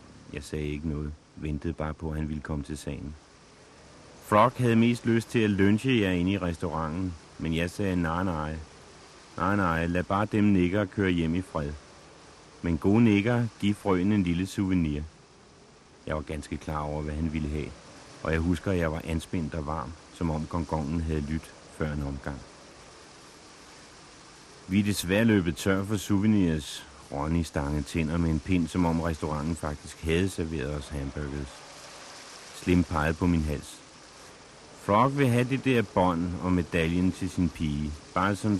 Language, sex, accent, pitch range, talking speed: Danish, male, native, 75-95 Hz, 175 wpm